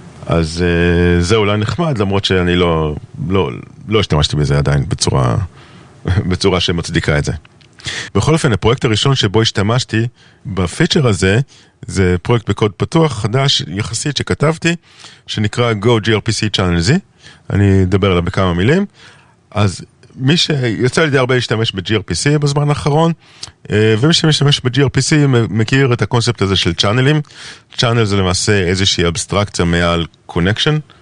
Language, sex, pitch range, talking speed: Hebrew, male, 90-125 Hz, 130 wpm